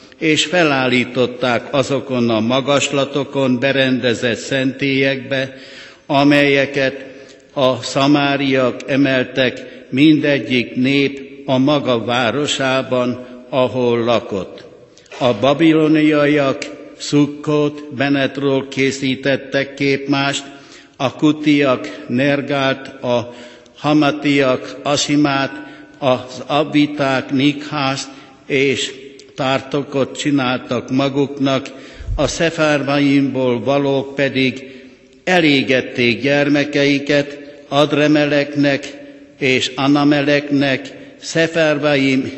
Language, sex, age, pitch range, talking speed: Hungarian, male, 60-79, 130-145 Hz, 65 wpm